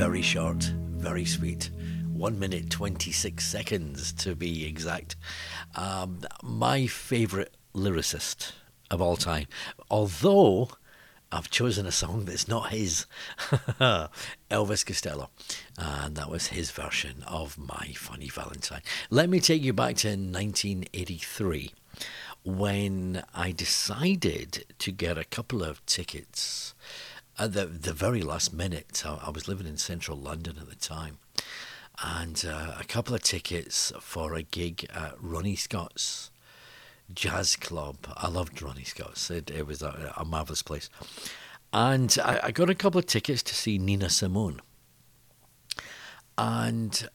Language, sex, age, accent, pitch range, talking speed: English, male, 60-79, British, 80-110 Hz, 135 wpm